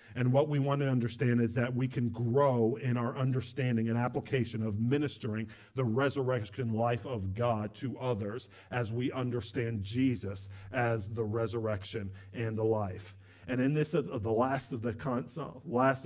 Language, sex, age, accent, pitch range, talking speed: English, male, 50-69, American, 110-130 Hz, 170 wpm